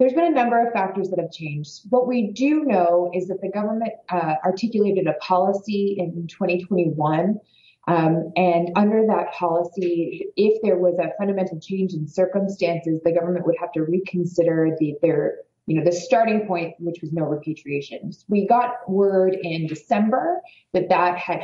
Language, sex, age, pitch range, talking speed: English, female, 20-39, 155-195 Hz, 170 wpm